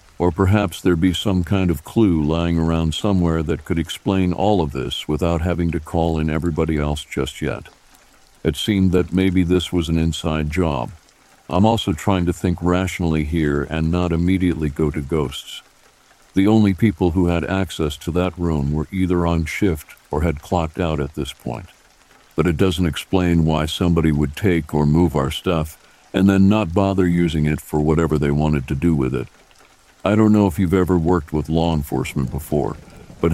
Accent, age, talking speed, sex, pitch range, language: American, 60-79, 190 wpm, male, 75-90 Hz, English